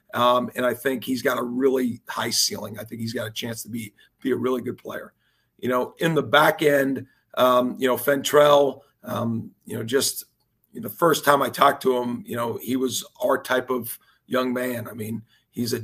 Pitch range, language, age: 125-145 Hz, English, 40-59